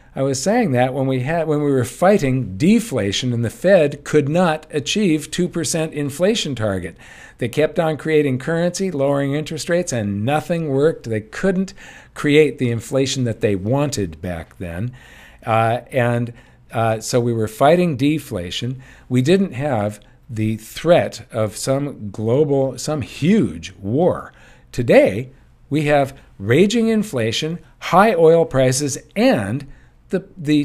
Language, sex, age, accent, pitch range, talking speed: English, male, 50-69, American, 115-160 Hz, 145 wpm